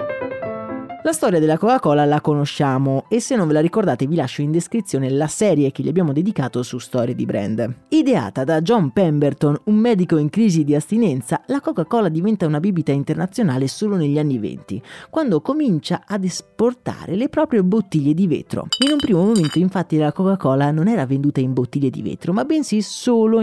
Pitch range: 145-220 Hz